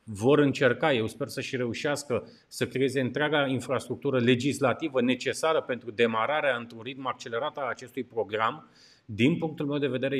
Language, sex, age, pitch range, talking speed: Romanian, male, 30-49, 120-140 Hz, 155 wpm